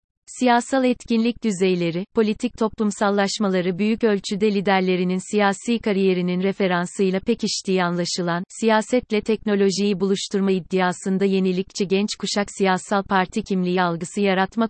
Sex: female